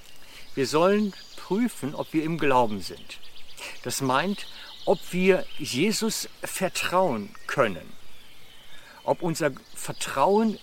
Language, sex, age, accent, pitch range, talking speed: German, male, 60-79, German, 135-180 Hz, 100 wpm